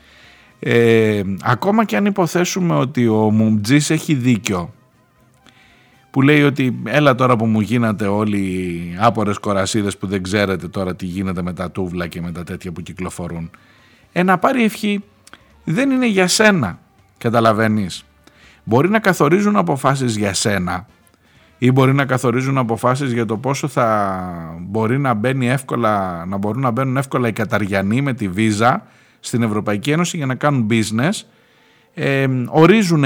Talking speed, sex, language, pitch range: 150 wpm, male, Greek, 105-160 Hz